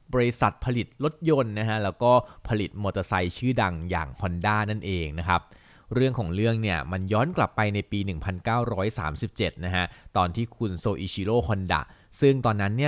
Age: 20-39